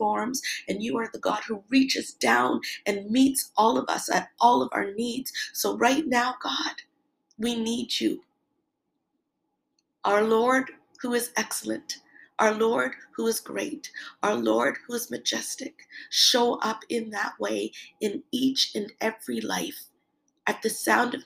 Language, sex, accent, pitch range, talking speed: English, female, American, 220-285 Hz, 150 wpm